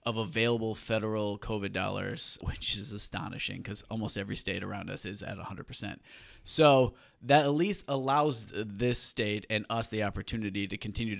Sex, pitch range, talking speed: male, 105-120 Hz, 160 wpm